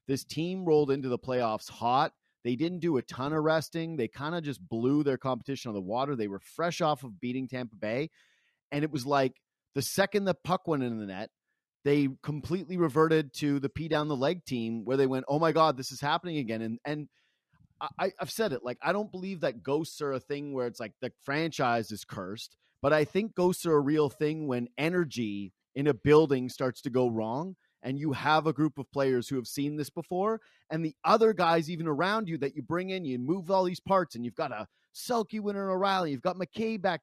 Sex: male